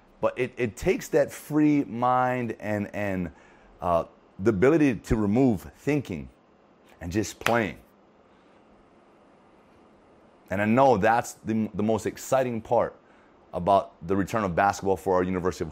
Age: 30-49